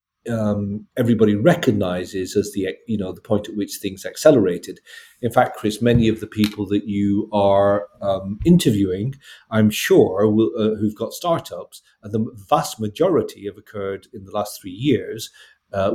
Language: English